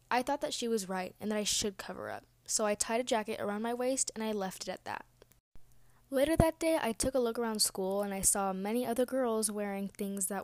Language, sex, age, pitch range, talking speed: English, female, 10-29, 195-235 Hz, 255 wpm